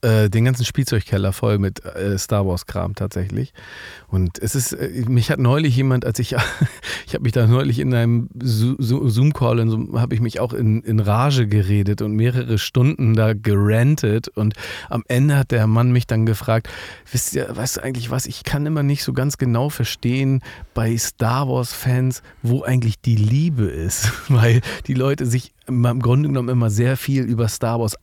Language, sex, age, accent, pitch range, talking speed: German, male, 40-59, German, 105-130 Hz, 180 wpm